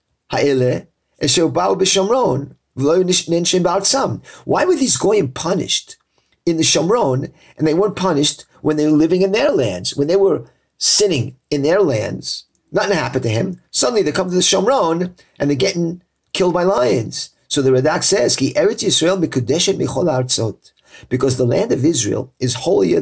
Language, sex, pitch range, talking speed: English, male, 125-160 Hz, 140 wpm